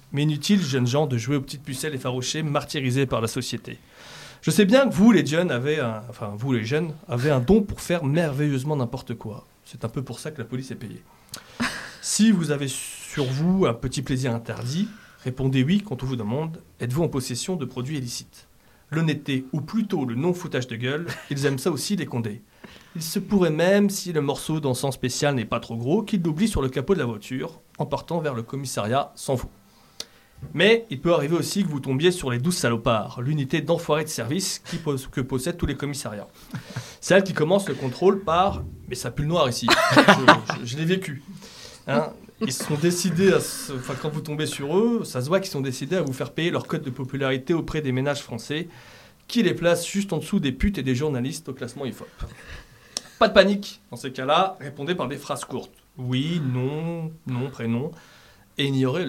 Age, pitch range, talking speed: 30-49, 130-170 Hz, 205 wpm